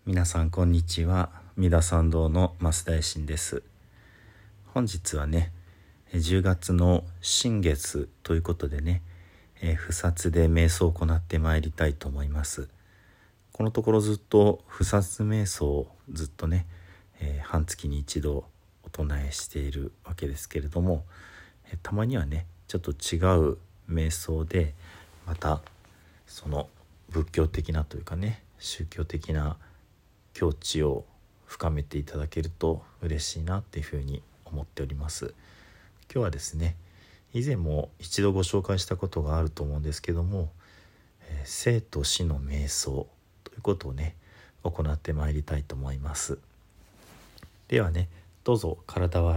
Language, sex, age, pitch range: Japanese, male, 40-59, 80-95 Hz